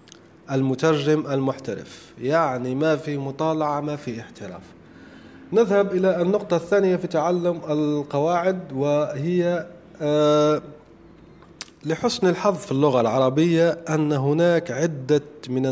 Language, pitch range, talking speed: Arabic, 135-175 Hz, 100 wpm